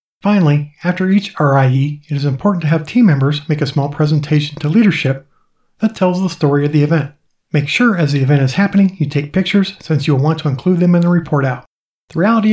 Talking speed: 225 wpm